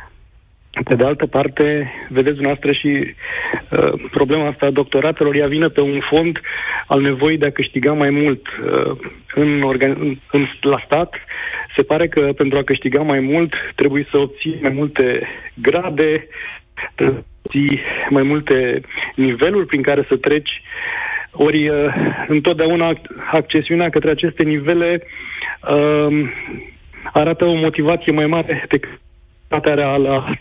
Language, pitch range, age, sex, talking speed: Romanian, 135-155 Hz, 40-59, male, 140 wpm